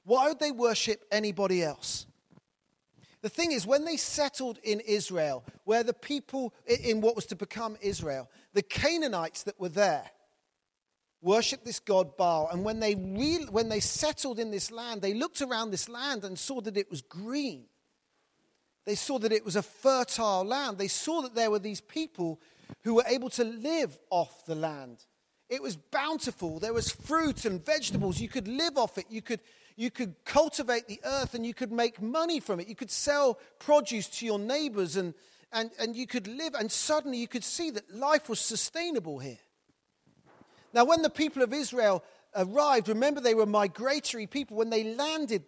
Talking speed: 180 wpm